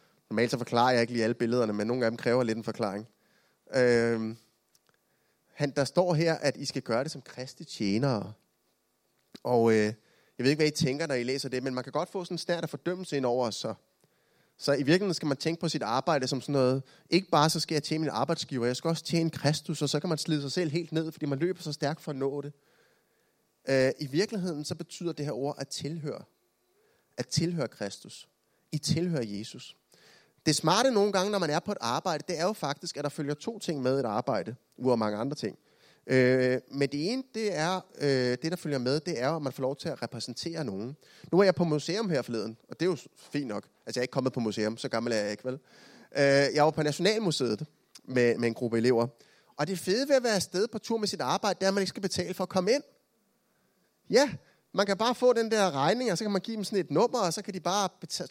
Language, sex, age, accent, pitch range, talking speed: Danish, male, 30-49, native, 130-175 Hz, 255 wpm